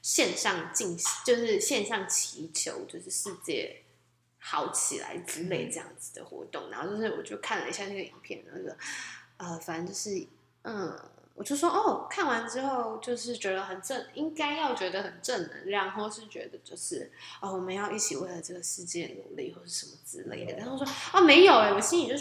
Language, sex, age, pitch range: Chinese, female, 10-29, 200-315 Hz